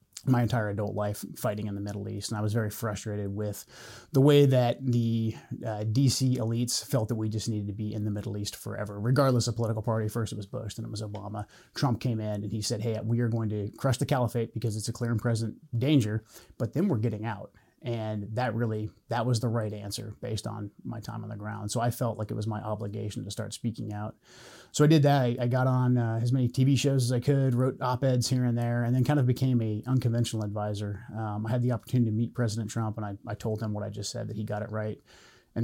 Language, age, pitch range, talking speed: English, 30-49, 105-120 Hz, 255 wpm